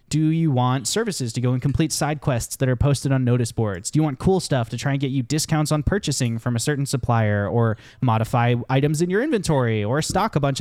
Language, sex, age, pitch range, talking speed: English, male, 20-39, 115-145 Hz, 245 wpm